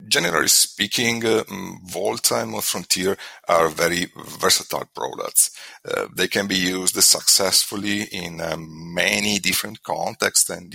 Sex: male